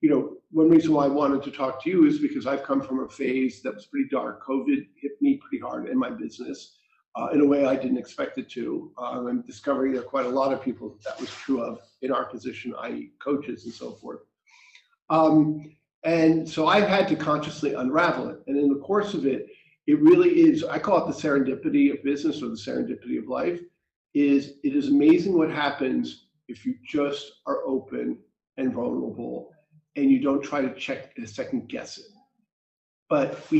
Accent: American